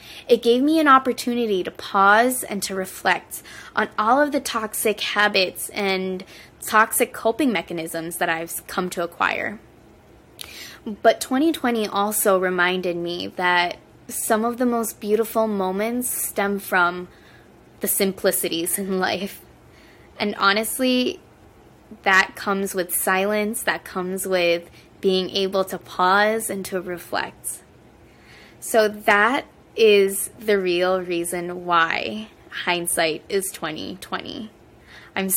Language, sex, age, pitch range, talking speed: English, female, 20-39, 180-225 Hz, 120 wpm